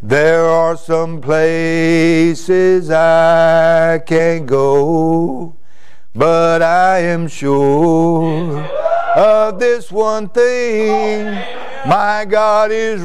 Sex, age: male, 60-79